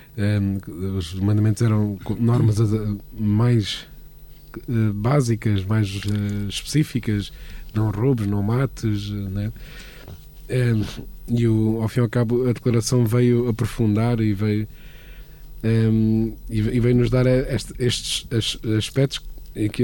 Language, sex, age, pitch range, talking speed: Portuguese, male, 20-39, 100-125 Hz, 125 wpm